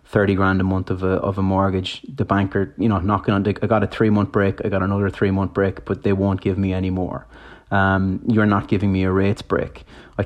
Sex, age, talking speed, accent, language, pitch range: male, 30-49, 245 wpm, Irish, English, 95-100 Hz